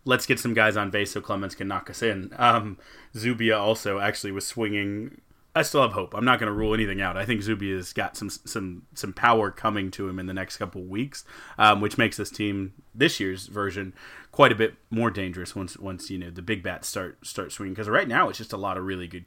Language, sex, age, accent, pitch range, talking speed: English, male, 30-49, American, 95-105 Hz, 250 wpm